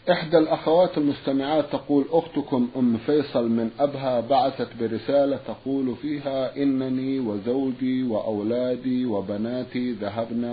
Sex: male